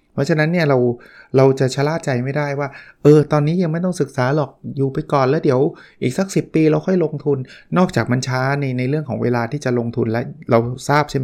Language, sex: Thai, male